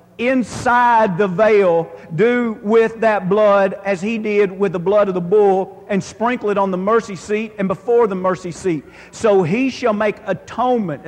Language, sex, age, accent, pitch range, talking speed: English, male, 50-69, American, 155-220 Hz, 180 wpm